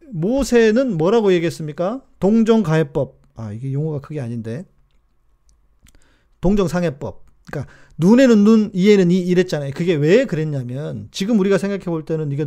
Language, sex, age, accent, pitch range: Korean, male, 40-59, native, 150-220 Hz